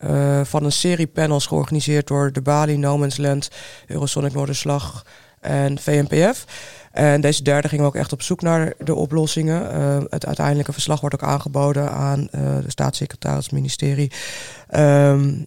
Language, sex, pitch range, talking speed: English, female, 140-160 Hz, 160 wpm